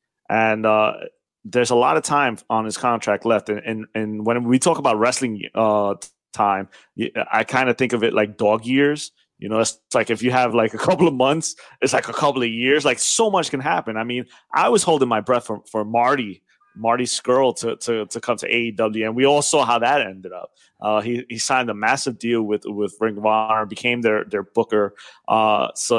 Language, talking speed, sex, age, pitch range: English, 225 wpm, male, 20-39, 110-140 Hz